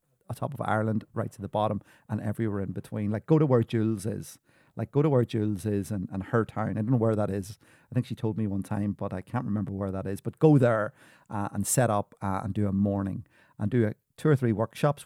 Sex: male